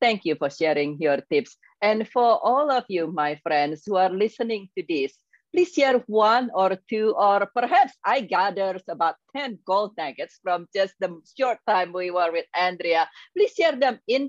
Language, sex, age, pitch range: English, female, 40-59, 165-220 Hz